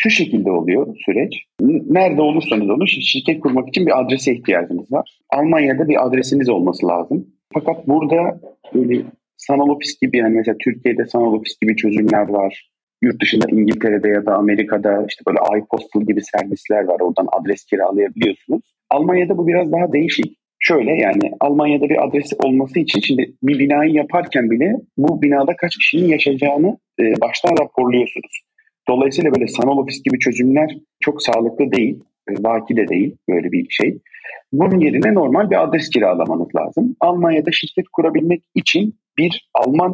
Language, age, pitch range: Turkish, 40-59, 110-155 Hz